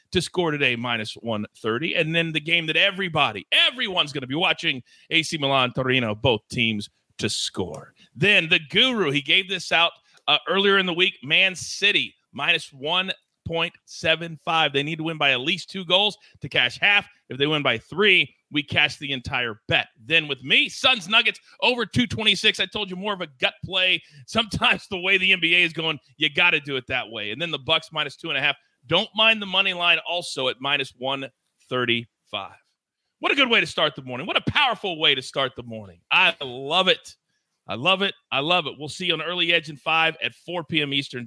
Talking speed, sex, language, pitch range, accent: 220 wpm, male, English, 130-185 Hz, American